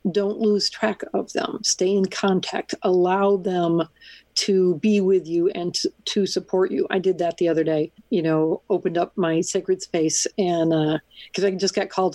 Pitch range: 170-195 Hz